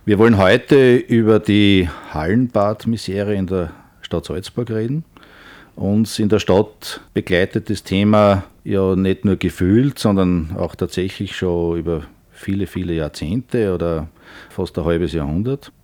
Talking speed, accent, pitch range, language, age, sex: 135 wpm, Austrian, 85-105 Hz, German, 50-69, male